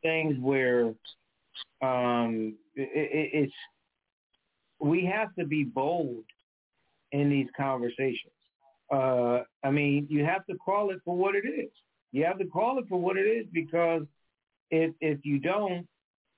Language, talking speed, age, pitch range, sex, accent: English, 145 wpm, 50-69, 125-165 Hz, male, American